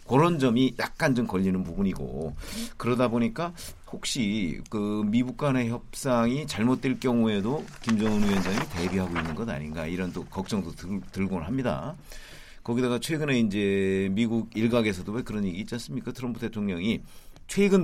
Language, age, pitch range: Korean, 40-59, 95-125 Hz